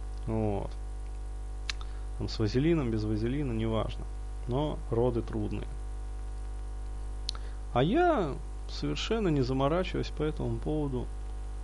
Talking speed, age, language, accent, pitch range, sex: 95 wpm, 20-39, Russian, native, 105-130 Hz, male